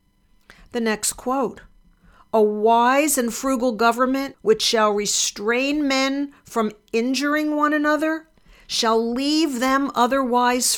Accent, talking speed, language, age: American, 110 wpm, English, 50-69